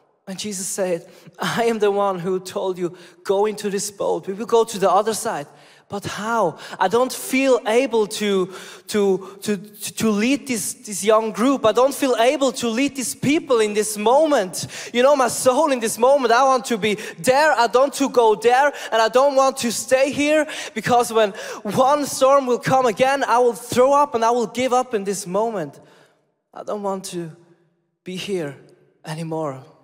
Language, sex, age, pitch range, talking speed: English, male, 20-39, 155-235 Hz, 195 wpm